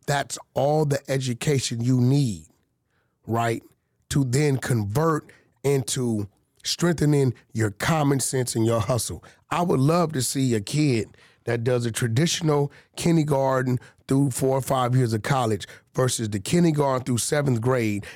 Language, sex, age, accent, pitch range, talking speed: English, male, 30-49, American, 115-155 Hz, 140 wpm